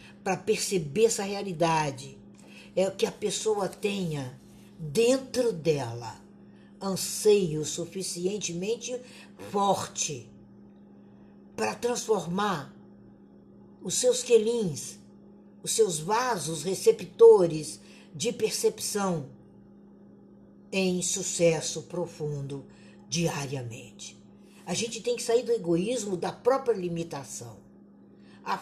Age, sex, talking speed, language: 60-79, female, 85 wpm, Portuguese